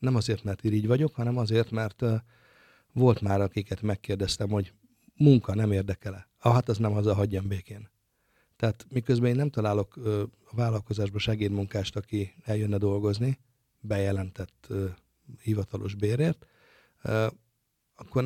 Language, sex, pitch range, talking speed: Hungarian, male, 100-120 Hz, 120 wpm